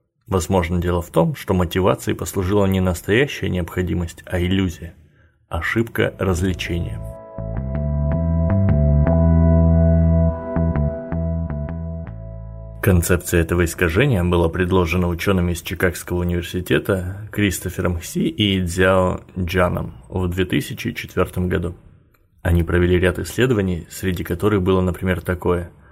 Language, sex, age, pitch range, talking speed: Russian, male, 30-49, 85-95 Hz, 95 wpm